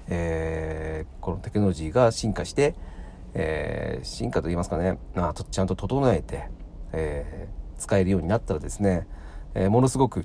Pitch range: 80-100 Hz